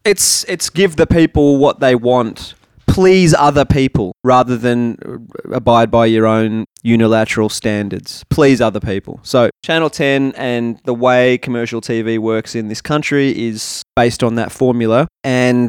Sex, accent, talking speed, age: male, Australian, 155 wpm, 20-39